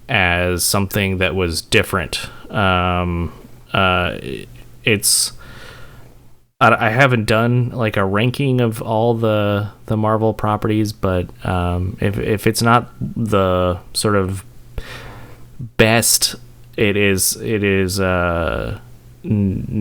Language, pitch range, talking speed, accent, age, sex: English, 95-115 Hz, 110 wpm, American, 20-39, male